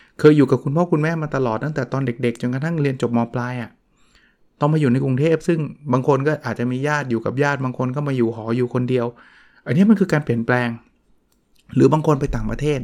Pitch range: 120-155 Hz